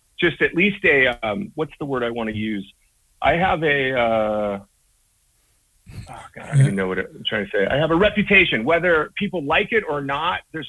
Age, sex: 40-59, male